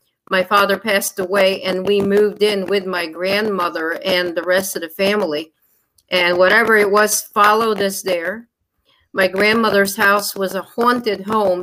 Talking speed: 160 wpm